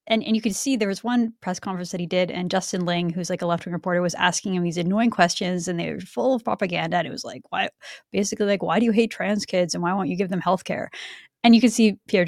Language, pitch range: English, 180-225 Hz